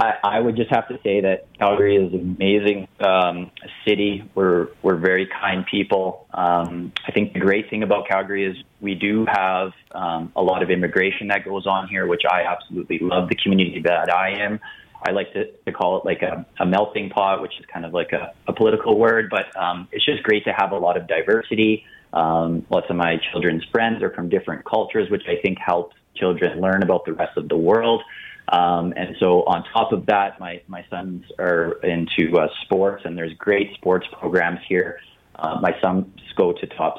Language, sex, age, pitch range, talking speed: English, male, 30-49, 85-105 Hz, 205 wpm